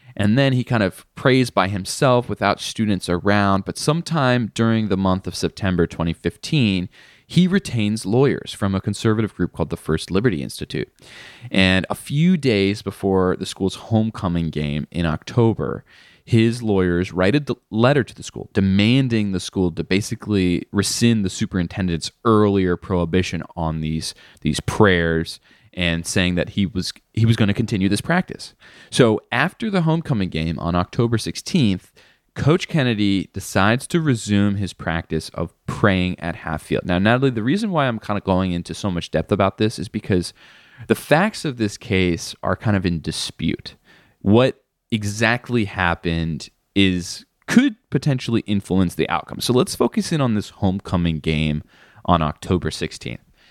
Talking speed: 160 wpm